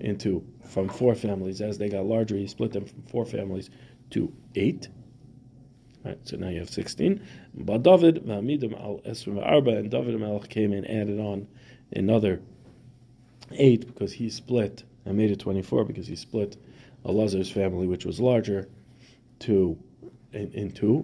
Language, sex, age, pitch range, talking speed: English, male, 40-59, 100-125 Hz, 150 wpm